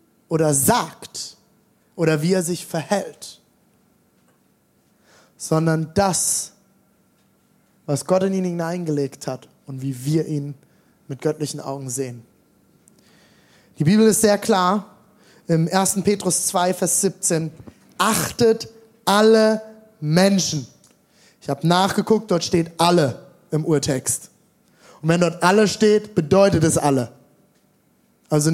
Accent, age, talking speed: German, 20-39, 115 wpm